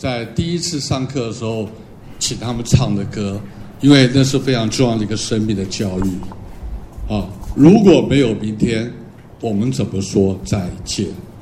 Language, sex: Chinese, male